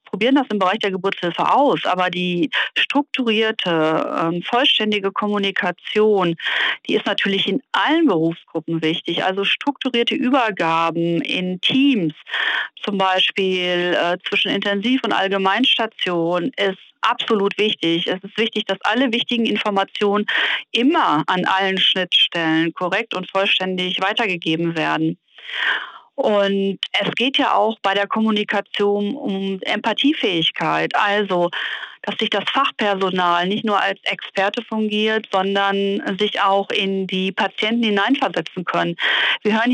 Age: 40-59